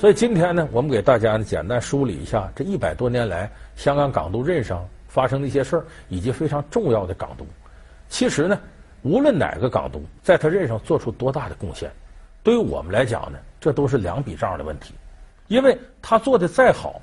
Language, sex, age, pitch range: Chinese, male, 50-69, 100-170 Hz